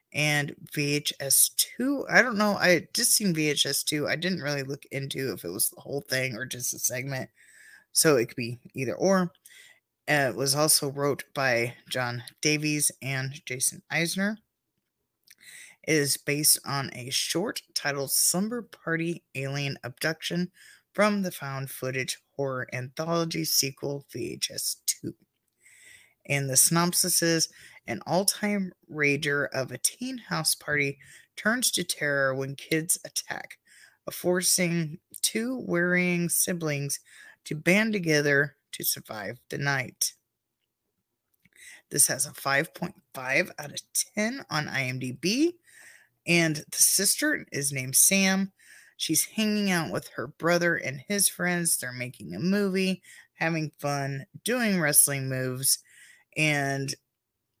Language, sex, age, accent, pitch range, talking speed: English, female, 20-39, American, 140-180 Hz, 130 wpm